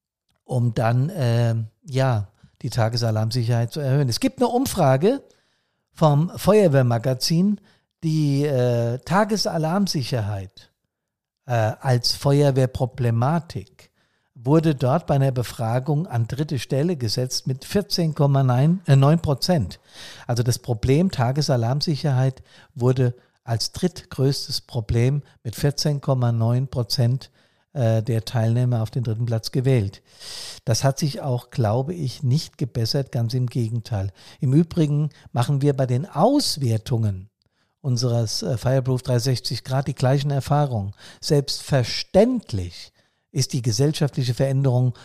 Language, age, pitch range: German, 50-69, 120-145 Hz